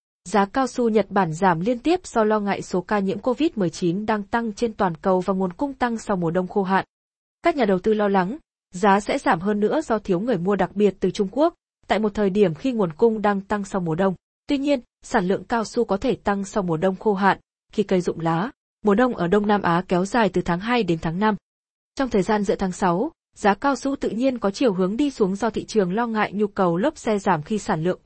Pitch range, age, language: 185-235 Hz, 20-39, Vietnamese